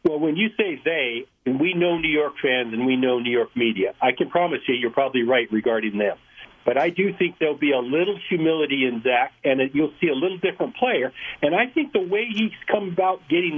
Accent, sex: American, male